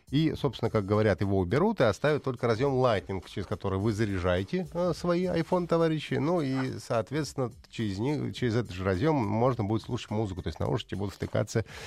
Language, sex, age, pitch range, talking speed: Russian, male, 30-49, 95-135 Hz, 175 wpm